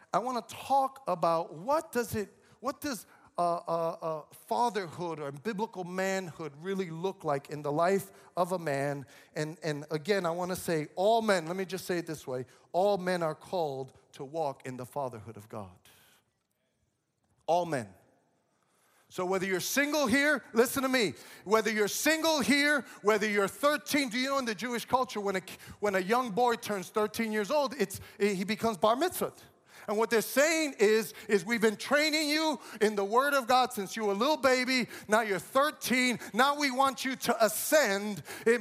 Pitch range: 185-260 Hz